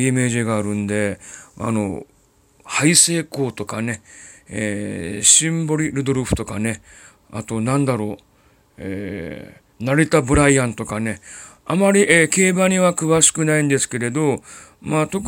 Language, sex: Japanese, male